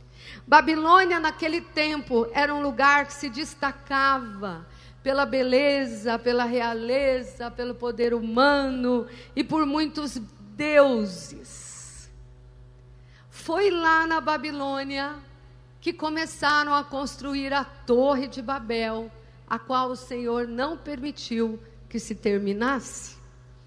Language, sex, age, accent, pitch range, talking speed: Portuguese, female, 50-69, Brazilian, 230-300 Hz, 105 wpm